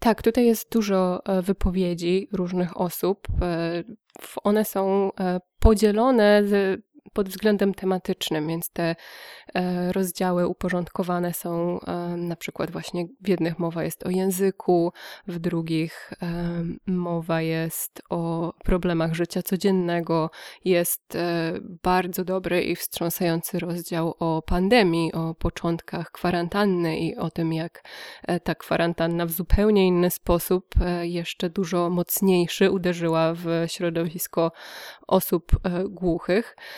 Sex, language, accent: female, Polish, native